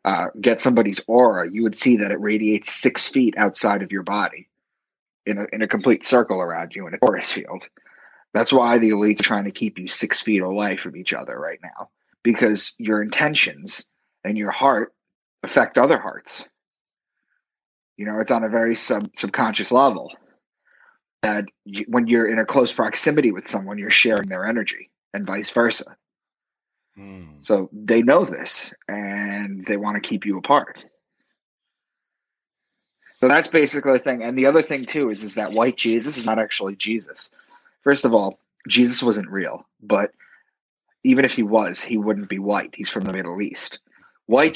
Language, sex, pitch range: English, male, 100-120 Hz